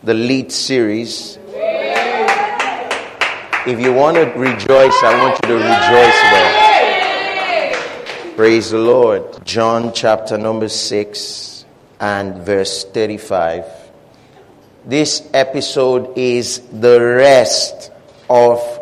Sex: male